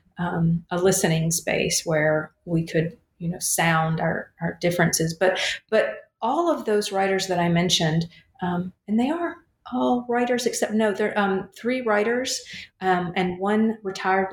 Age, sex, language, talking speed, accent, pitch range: 40-59, female, English, 160 wpm, American, 170-205 Hz